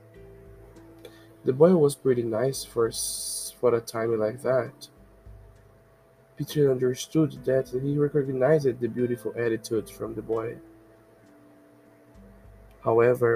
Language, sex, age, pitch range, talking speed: Portuguese, male, 20-39, 110-130 Hz, 105 wpm